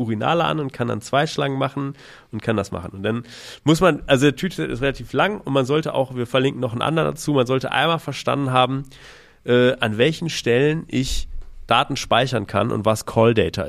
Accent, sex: German, male